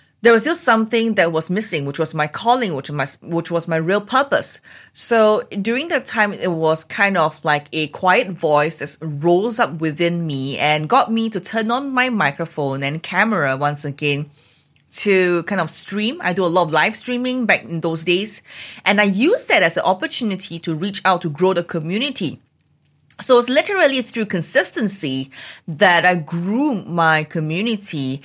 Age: 20-39